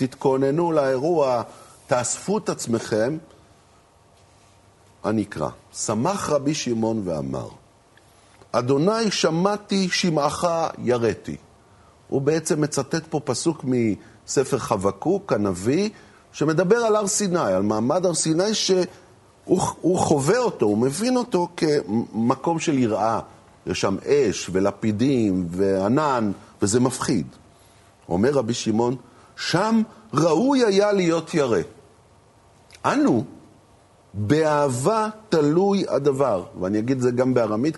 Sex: male